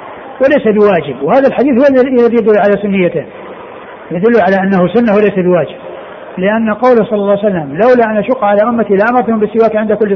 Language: Arabic